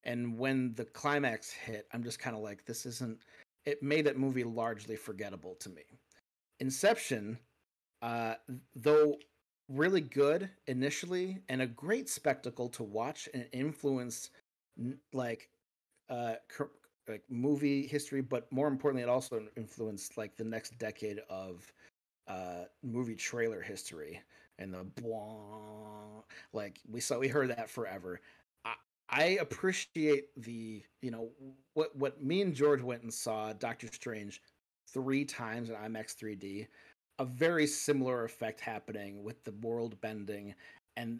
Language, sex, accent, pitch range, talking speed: English, male, American, 115-145 Hz, 135 wpm